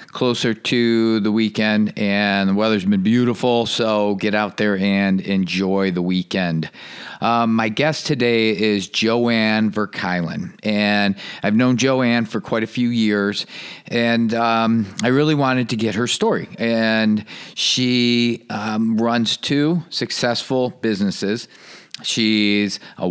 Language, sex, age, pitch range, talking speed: English, male, 40-59, 105-125 Hz, 130 wpm